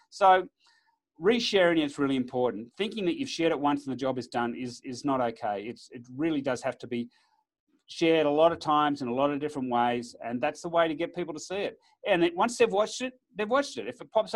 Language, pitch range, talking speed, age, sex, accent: English, 130-200 Hz, 250 wpm, 40-59, male, Australian